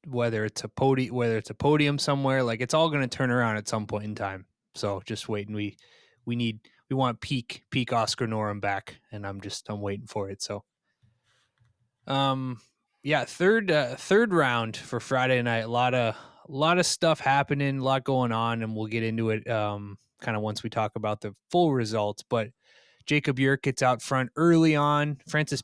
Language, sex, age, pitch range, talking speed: English, male, 20-39, 110-135 Hz, 205 wpm